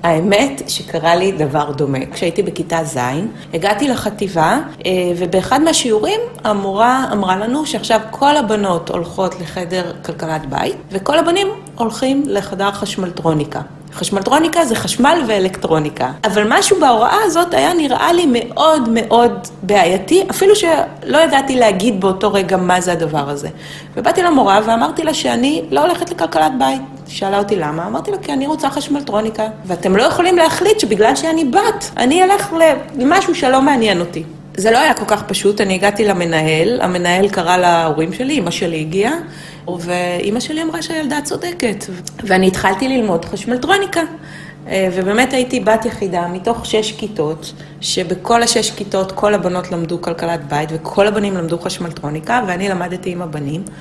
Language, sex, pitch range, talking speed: Hebrew, female, 175-260 Hz, 145 wpm